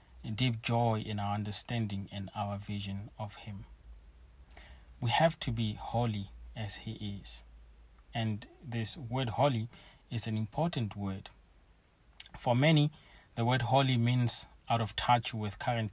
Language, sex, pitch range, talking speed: English, male, 95-120 Hz, 140 wpm